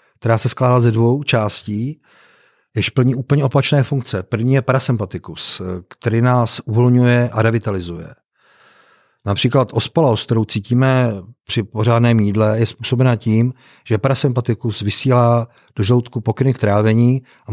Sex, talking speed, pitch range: male, 130 wpm, 110-130 Hz